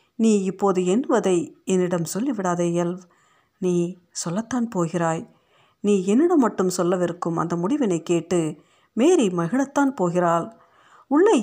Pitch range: 175-230 Hz